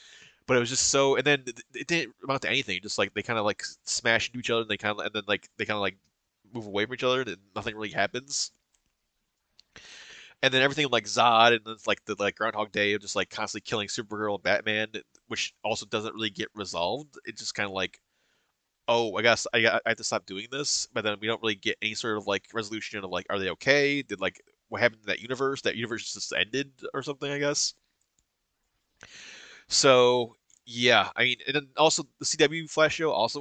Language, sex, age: English, male, 20-39